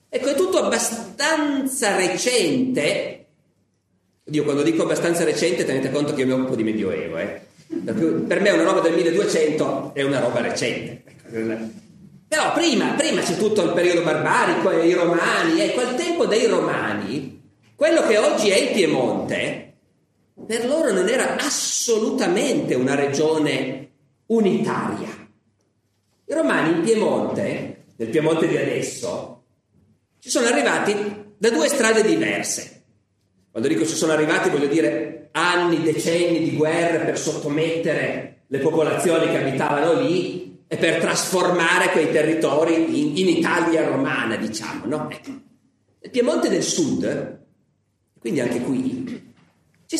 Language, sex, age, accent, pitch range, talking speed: Italian, male, 40-59, native, 140-225 Hz, 130 wpm